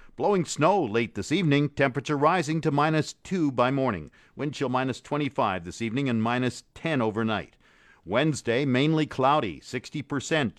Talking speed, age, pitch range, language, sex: 145 wpm, 50-69, 110-150 Hz, English, male